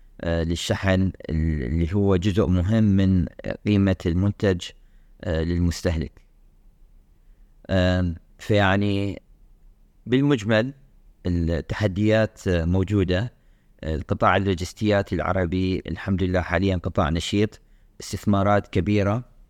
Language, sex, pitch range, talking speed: Arabic, male, 85-105 Hz, 70 wpm